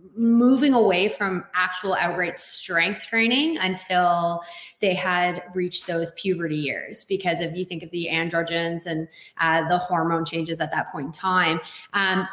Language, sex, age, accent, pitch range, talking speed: English, female, 20-39, American, 180-210 Hz, 155 wpm